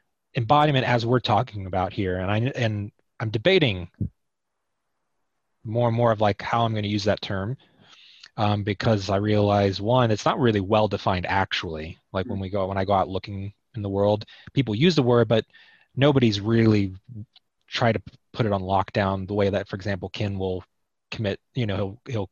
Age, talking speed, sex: 20-39, 190 wpm, male